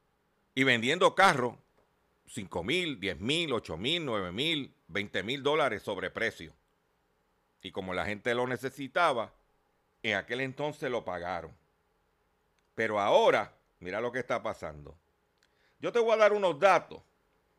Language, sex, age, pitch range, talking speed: Spanish, male, 50-69, 115-160 Hz, 135 wpm